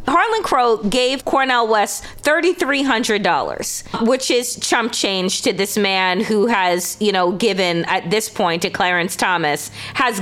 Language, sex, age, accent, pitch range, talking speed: English, female, 30-49, American, 195-280 Hz, 145 wpm